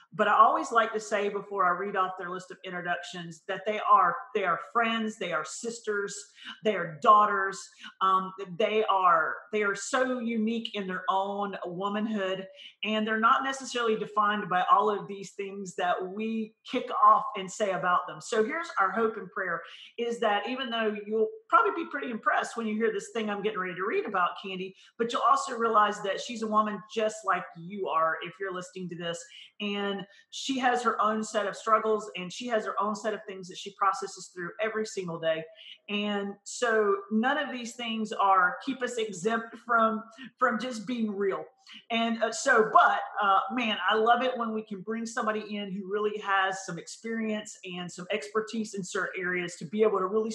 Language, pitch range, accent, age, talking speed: English, 190-230 Hz, American, 40-59, 195 wpm